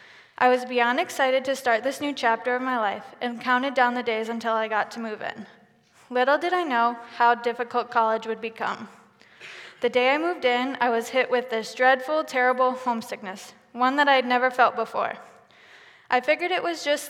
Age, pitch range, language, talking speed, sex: 20-39, 235-270 Hz, English, 200 wpm, female